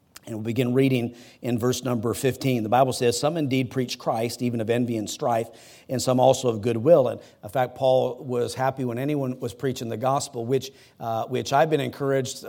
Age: 50-69